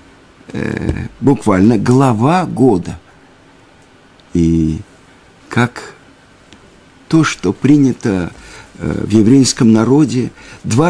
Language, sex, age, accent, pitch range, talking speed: Russian, male, 50-69, native, 115-155 Hz, 75 wpm